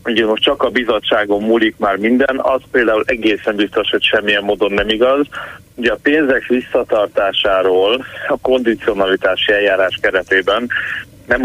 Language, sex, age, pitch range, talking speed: Hungarian, male, 30-49, 110-135 Hz, 135 wpm